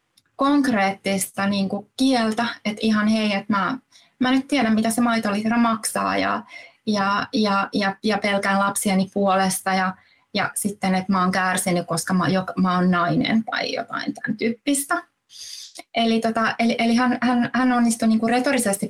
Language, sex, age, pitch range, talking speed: Finnish, female, 20-39, 200-245 Hz, 160 wpm